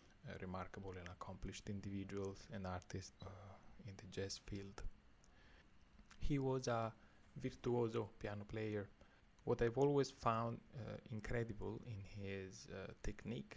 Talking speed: 125 wpm